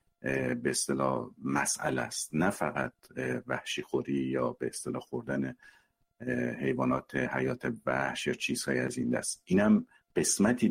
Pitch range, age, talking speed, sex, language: 70-90 Hz, 50-69, 125 wpm, male, Persian